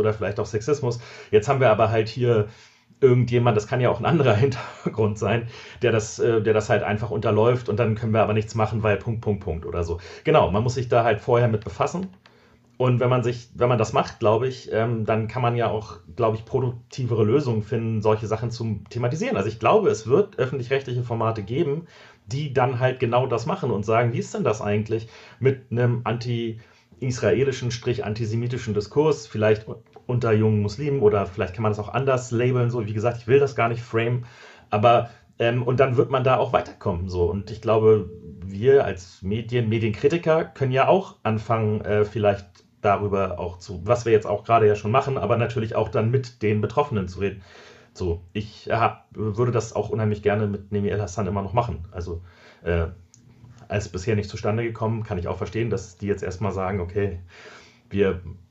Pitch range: 105-120 Hz